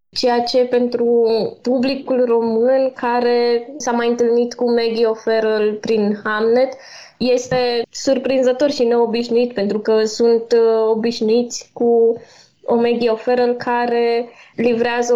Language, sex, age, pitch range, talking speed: Romanian, female, 20-39, 210-245 Hz, 105 wpm